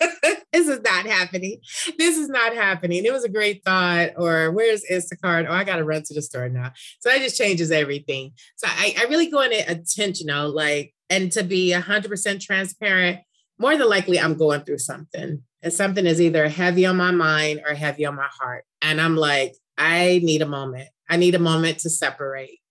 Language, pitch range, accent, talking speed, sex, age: English, 140-180 Hz, American, 210 wpm, female, 30-49